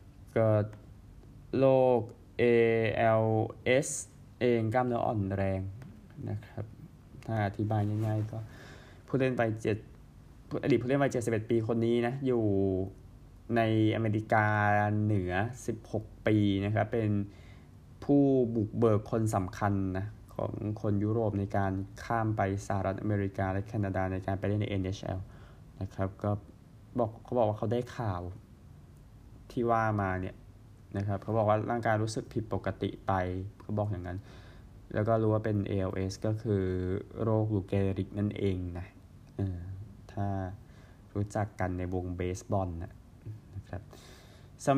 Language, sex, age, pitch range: Thai, male, 20-39, 100-115 Hz